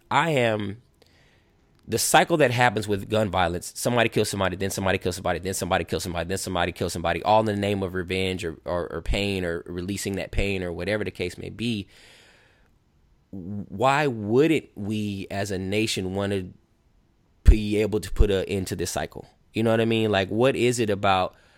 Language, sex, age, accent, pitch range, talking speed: English, male, 20-39, American, 90-105 Hz, 195 wpm